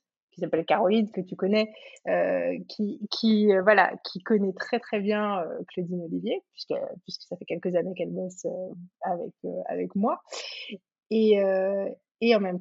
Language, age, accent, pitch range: French, 20-39, French, 185-225 Hz